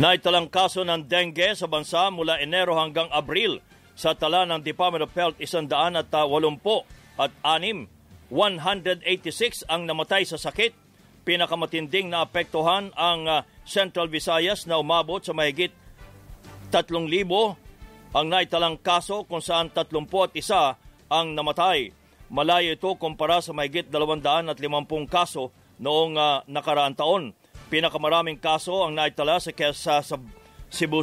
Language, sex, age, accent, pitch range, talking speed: English, male, 40-59, Filipino, 150-175 Hz, 115 wpm